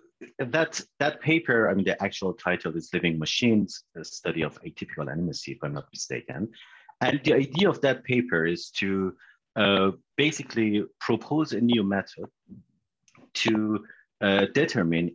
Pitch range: 90-120 Hz